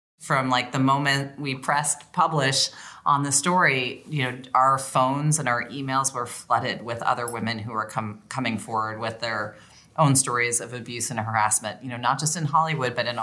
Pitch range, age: 115-150 Hz, 30-49